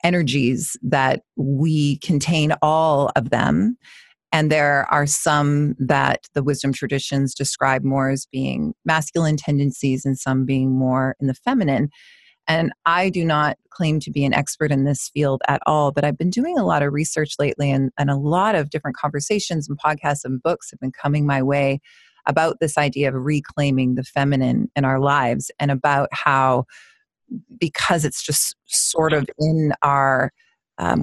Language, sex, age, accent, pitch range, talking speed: English, female, 30-49, American, 135-160 Hz, 170 wpm